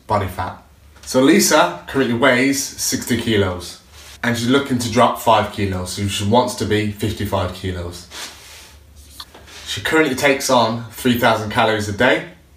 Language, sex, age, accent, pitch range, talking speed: English, male, 20-39, British, 100-120 Hz, 145 wpm